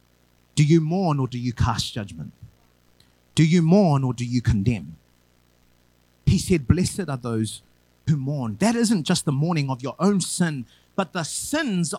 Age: 30-49